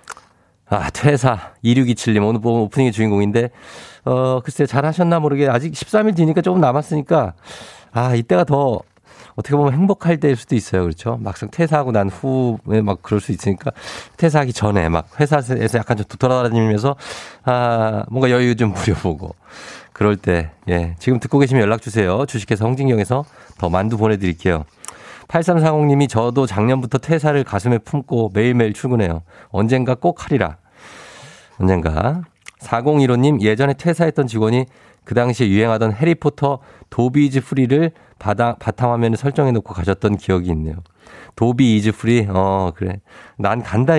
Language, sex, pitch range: Korean, male, 105-140 Hz